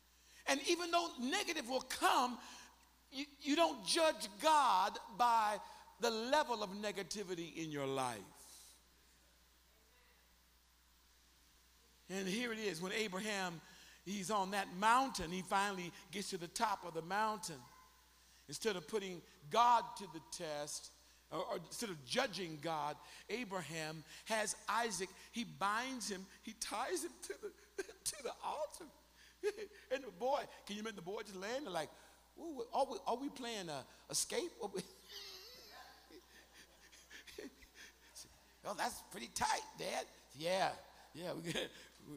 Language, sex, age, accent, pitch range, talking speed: English, male, 50-69, American, 150-240 Hz, 130 wpm